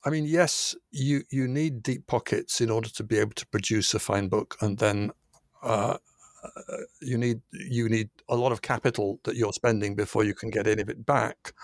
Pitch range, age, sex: 110-130 Hz, 60-79, male